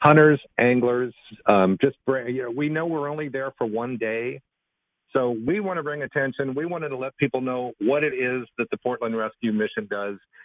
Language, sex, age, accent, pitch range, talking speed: English, male, 50-69, American, 115-150 Hz, 205 wpm